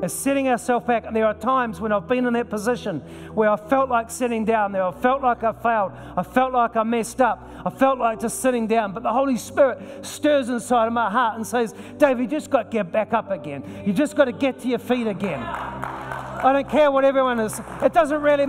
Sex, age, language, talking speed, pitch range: male, 40-59, English, 245 wpm, 225-275 Hz